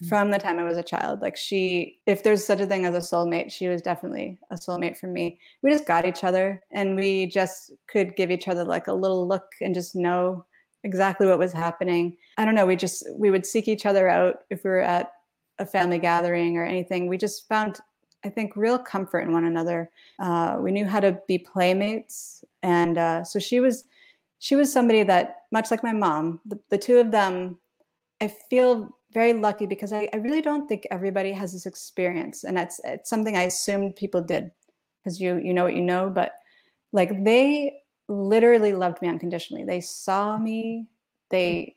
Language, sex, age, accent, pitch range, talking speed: English, female, 30-49, American, 180-215 Hz, 200 wpm